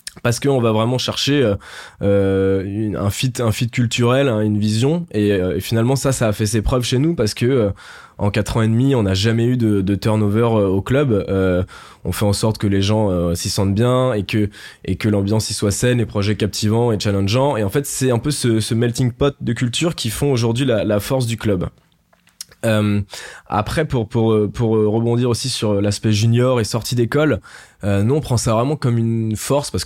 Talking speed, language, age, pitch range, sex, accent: 225 wpm, French, 20-39, 100-125 Hz, male, French